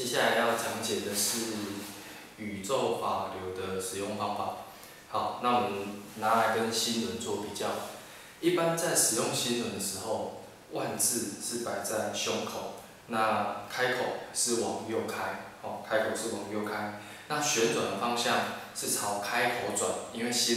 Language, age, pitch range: Chinese, 20-39, 105-120 Hz